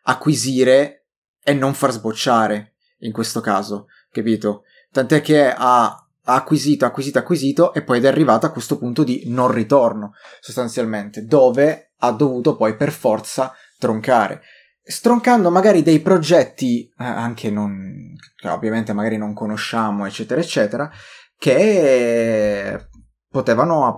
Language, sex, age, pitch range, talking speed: Italian, male, 20-39, 110-135 Hz, 120 wpm